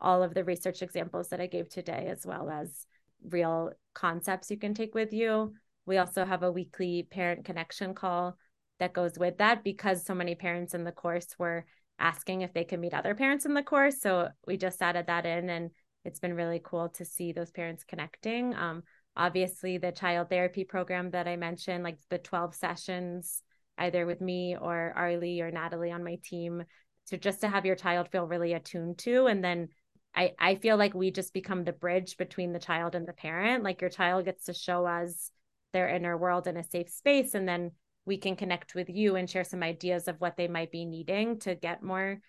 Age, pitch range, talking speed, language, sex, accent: 20-39, 175-195 Hz, 215 wpm, English, female, American